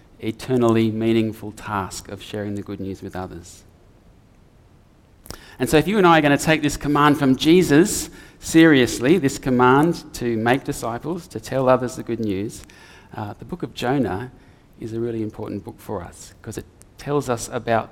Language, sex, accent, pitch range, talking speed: English, male, Australian, 105-140 Hz, 180 wpm